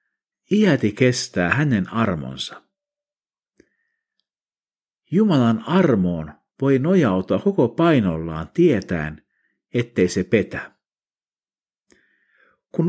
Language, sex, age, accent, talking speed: Finnish, male, 50-69, native, 70 wpm